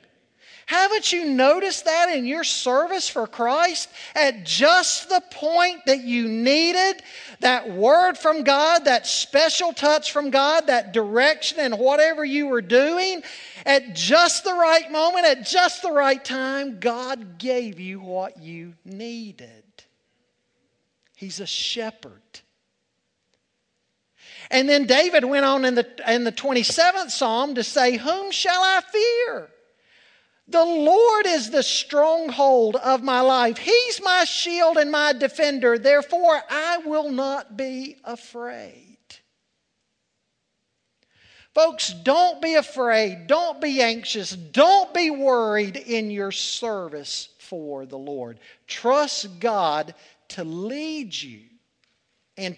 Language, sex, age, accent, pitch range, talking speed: English, male, 50-69, American, 225-325 Hz, 125 wpm